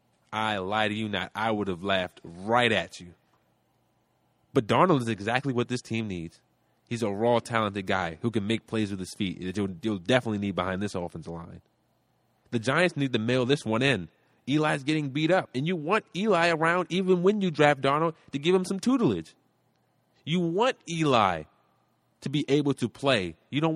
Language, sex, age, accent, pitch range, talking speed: English, male, 30-49, American, 110-165 Hz, 195 wpm